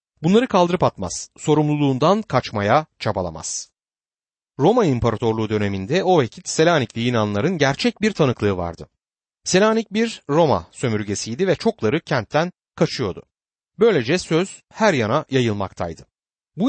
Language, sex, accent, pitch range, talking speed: Turkish, male, native, 110-180 Hz, 110 wpm